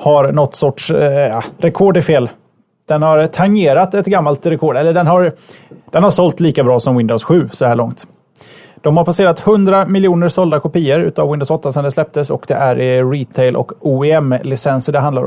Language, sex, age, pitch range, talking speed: Swedish, male, 30-49, 140-180 Hz, 195 wpm